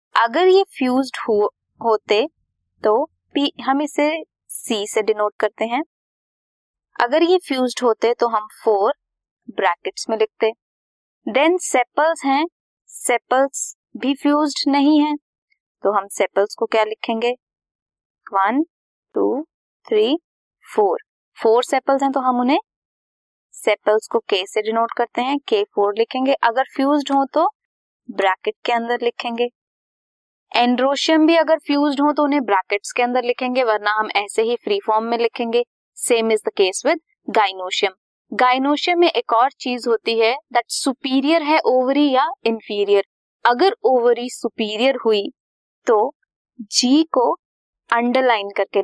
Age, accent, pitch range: 20-39, native, 225-295 Hz